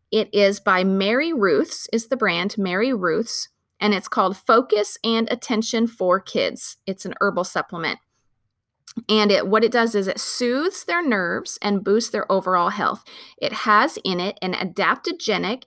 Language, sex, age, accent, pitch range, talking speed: English, female, 30-49, American, 185-225 Hz, 160 wpm